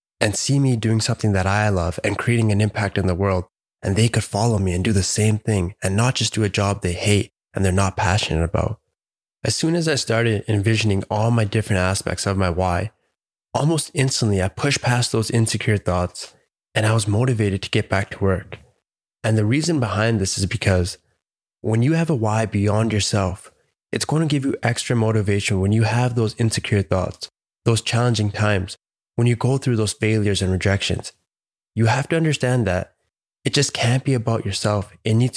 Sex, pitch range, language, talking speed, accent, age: male, 100-120 Hz, English, 200 wpm, American, 20-39